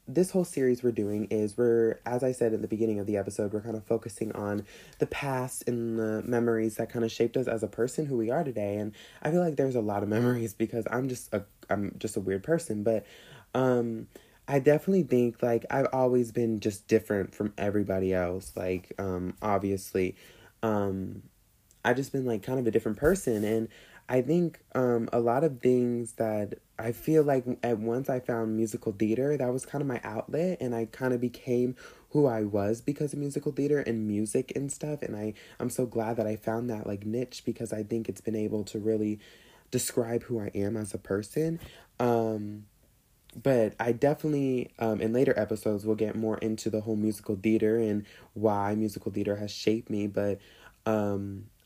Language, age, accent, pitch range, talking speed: English, 20-39, American, 105-125 Hz, 200 wpm